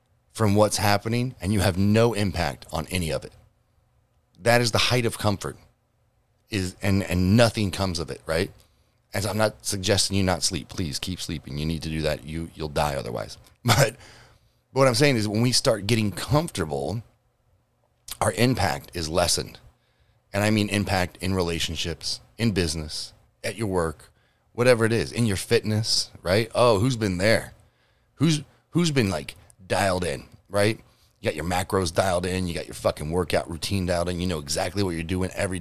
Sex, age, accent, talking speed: male, 30-49, American, 185 wpm